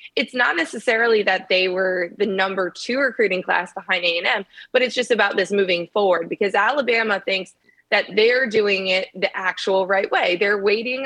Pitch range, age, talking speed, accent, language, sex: 185-240 Hz, 20-39, 190 wpm, American, English, female